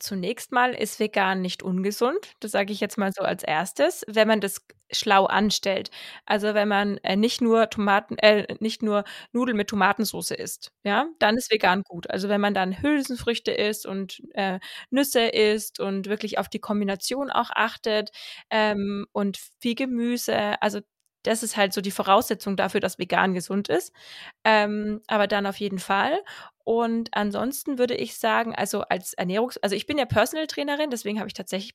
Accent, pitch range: German, 205-245 Hz